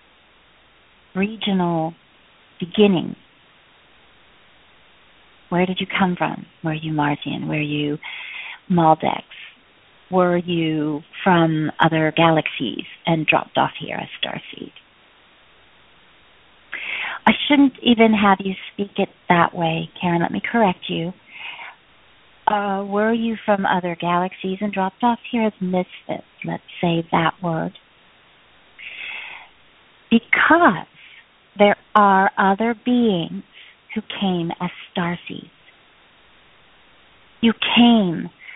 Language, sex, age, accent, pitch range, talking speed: English, female, 40-59, American, 175-215 Hz, 105 wpm